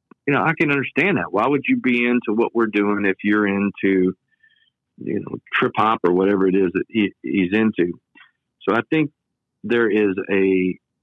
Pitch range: 90-120 Hz